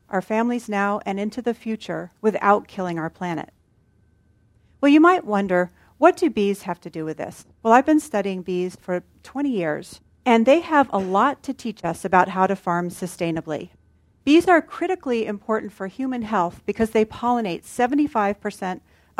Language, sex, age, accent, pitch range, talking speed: English, female, 40-59, American, 185-240 Hz, 170 wpm